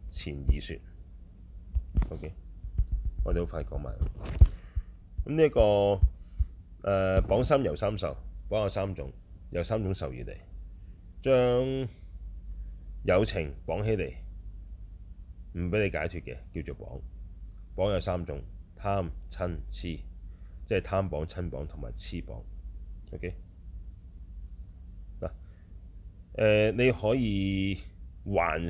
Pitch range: 80-95 Hz